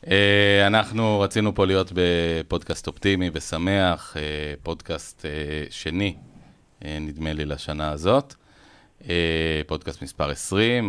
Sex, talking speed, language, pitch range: male, 90 wpm, Hebrew, 75-90 Hz